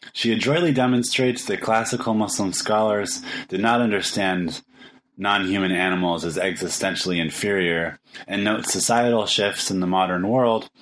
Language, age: English, 20-39